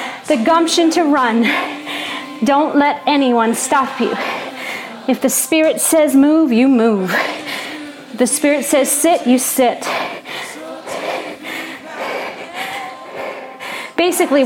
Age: 40-59